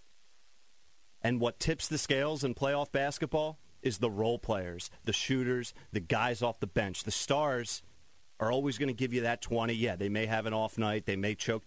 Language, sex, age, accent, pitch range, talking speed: English, male, 30-49, American, 100-120 Hz, 200 wpm